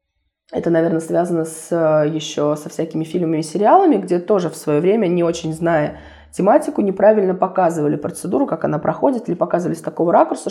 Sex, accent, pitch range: female, native, 160-205 Hz